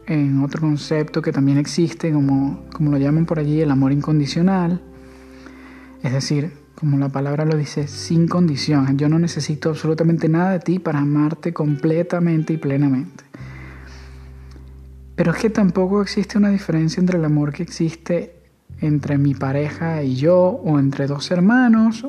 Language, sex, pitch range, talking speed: Spanish, male, 145-185 Hz, 155 wpm